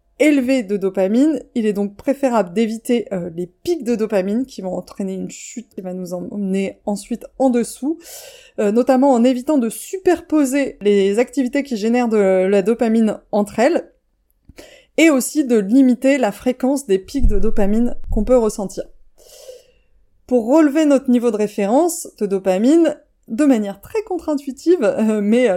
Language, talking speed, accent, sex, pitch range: French, 155 wpm, French, female, 210-275 Hz